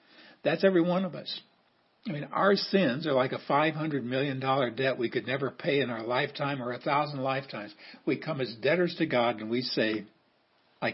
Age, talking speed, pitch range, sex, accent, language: 60-79, 195 wpm, 125-155 Hz, male, American, English